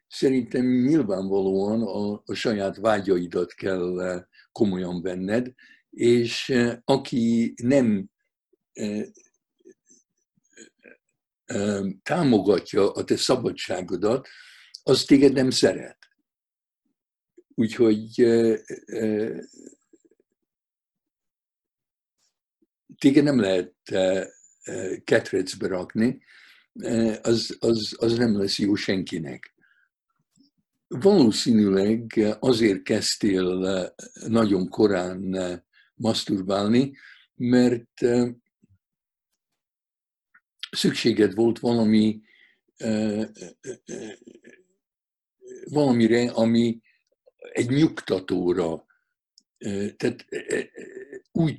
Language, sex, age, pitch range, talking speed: Hungarian, male, 60-79, 105-145 Hz, 55 wpm